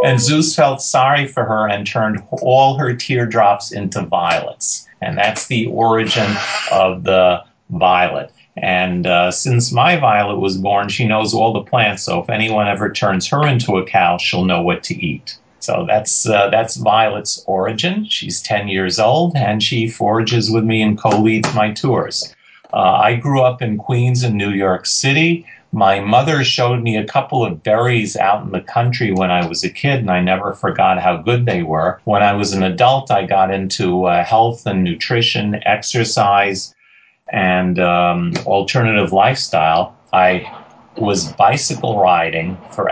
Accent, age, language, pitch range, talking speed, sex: American, 50-69, English, 95-120 Hz, 170 wpm, male